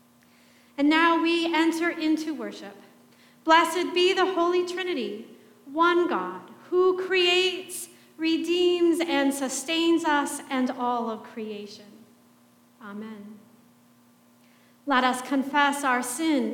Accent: American